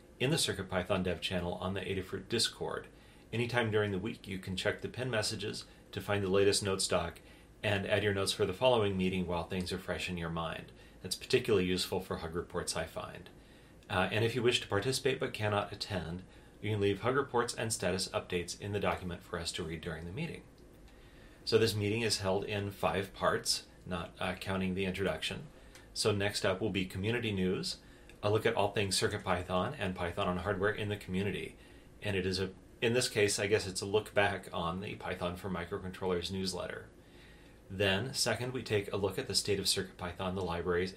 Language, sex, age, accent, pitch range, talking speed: English, male, 30-49, American, 90-105 Hz, 205 wpm